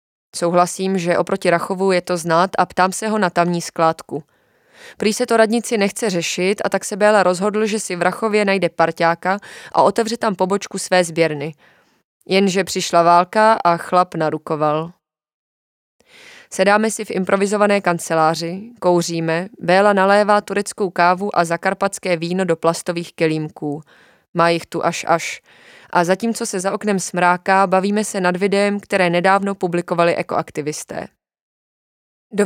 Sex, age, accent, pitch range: female, 20-39, native, 175-210 Hz